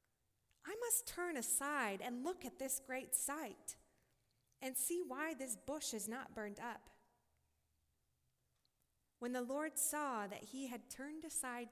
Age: 20-39